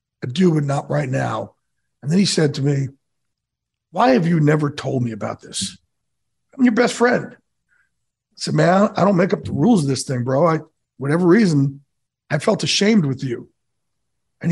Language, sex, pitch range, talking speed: English, male, 145-185 Hz, 185 wpm